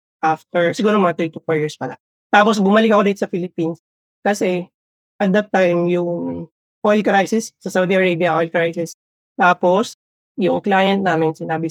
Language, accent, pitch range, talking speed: English, Filipino, 165-195 Hz, 155 wpm